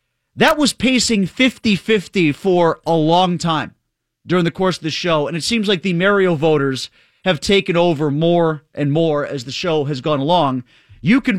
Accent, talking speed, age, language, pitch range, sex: American, 185 wpm, 30-49, English, 130-195 Hz, male